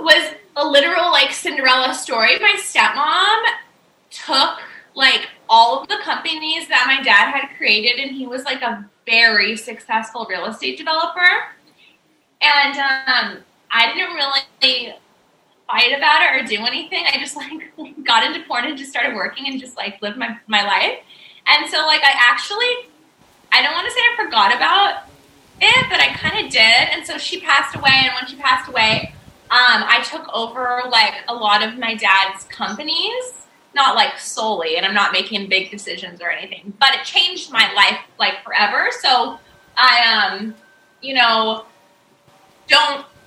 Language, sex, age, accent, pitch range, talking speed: English, female, 10-29, American, 225-295 Hz, 170 wpm